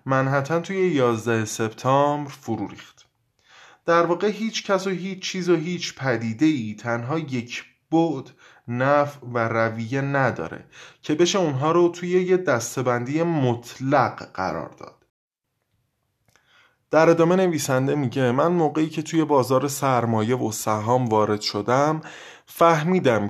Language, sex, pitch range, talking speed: Persian, male, 120-170 Hz, 125 wpm